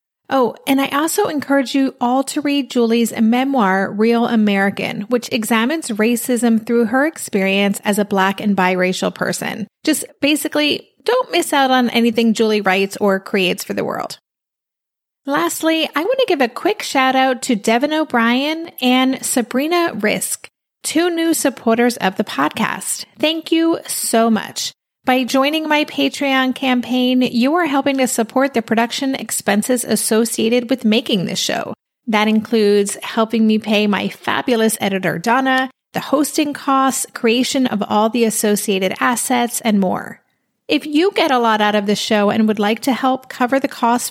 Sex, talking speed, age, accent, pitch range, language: female, 160 wpm, 30-49, American, 215-275 Hz, English